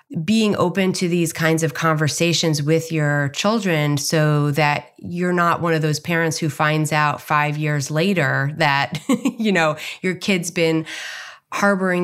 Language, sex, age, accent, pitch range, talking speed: English, female, 30-49, American, 150-195 Hz, 155 wpm